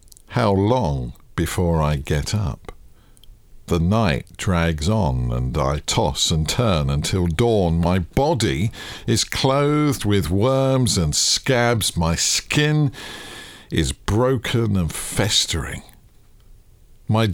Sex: male